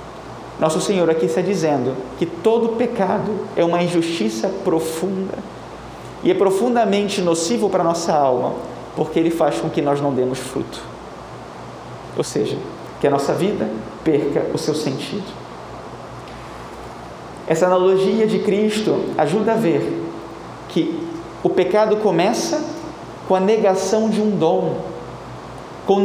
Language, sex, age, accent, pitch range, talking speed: Portuguese, male, 40-59, Brazilian, 160-215 Hz, 130 wpm